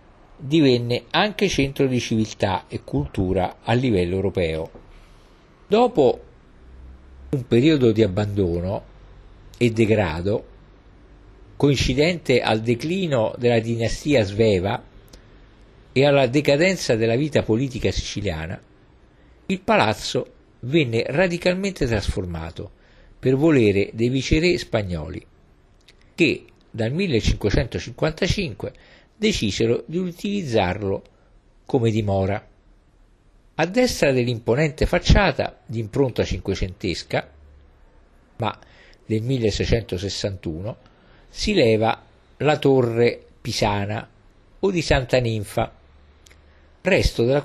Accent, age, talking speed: native, 50-69, 85 wpm